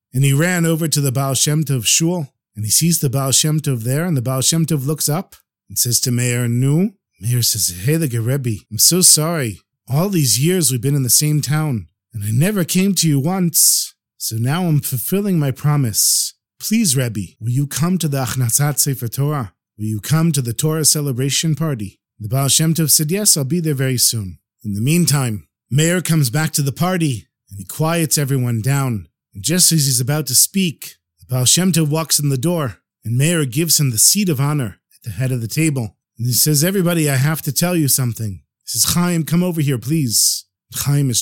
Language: English